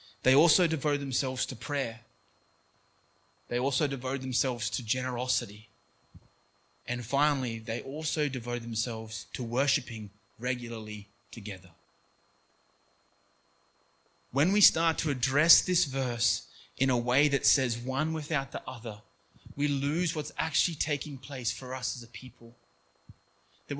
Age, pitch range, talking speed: 20-39, 125-160 Hz, 125 wpm